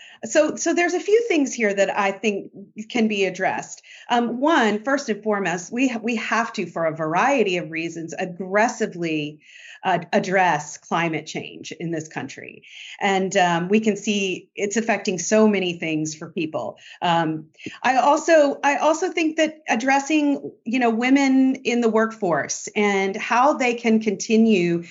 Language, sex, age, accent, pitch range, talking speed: English, female, 40-59, American, 185-250 Hz, 160 wpm